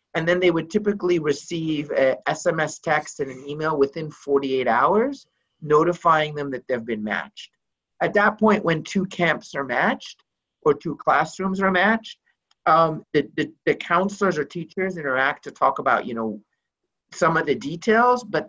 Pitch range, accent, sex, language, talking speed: 145-185 Hz, American, male, English, 170 wpm